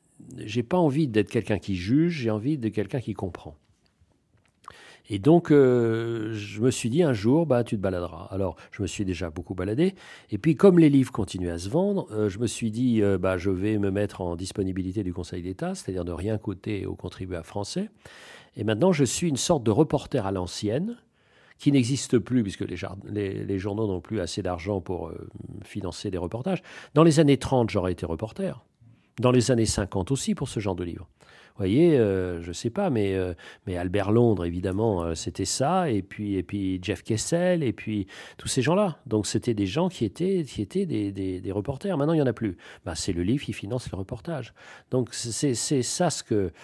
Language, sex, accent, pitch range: French, male, French, 95-140 Hz